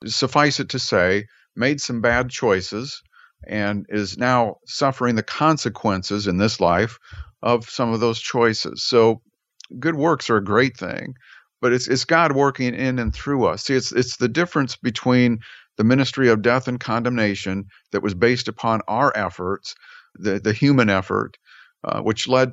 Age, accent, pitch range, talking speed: 50-69, American, 105-125 Hz, 170 wpm